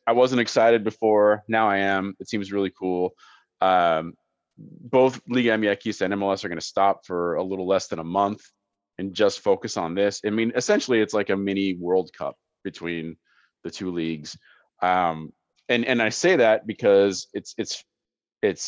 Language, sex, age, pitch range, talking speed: English, male, 30-49, 85-110 Hz, 180 wpm